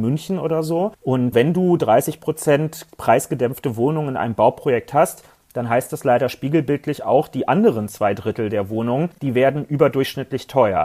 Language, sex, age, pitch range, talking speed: German, male, 40-59, 115-150 Hz, 160 wpm